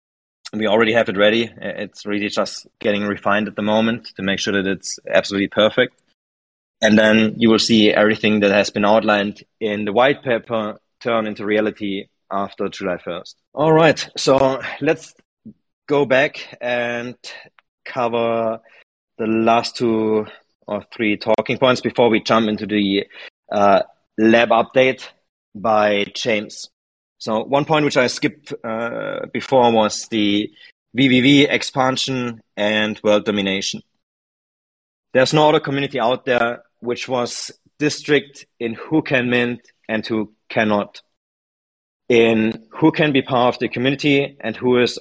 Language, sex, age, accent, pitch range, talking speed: English, male, 30-49, German, 105-130 Hz, 145 wpm